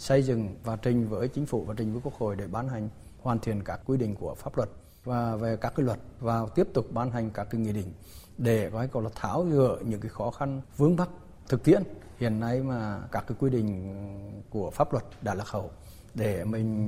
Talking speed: 235 wpm